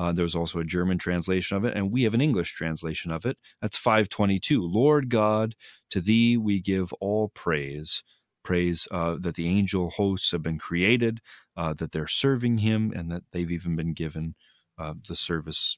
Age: 30-49